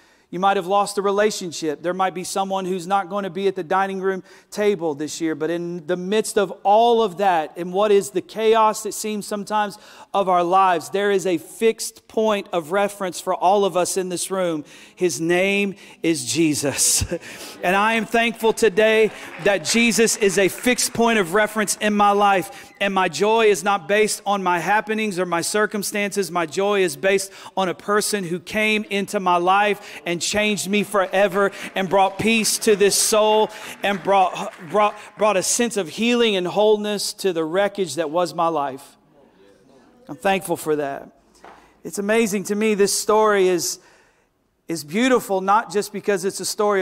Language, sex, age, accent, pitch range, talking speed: English, male, 40-59, American, 180-210 Hz, 185 wpm